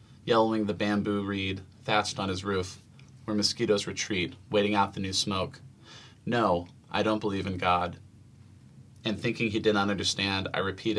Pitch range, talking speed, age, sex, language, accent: 100-115 Hz, 165 wpm, 30-49, male, English, American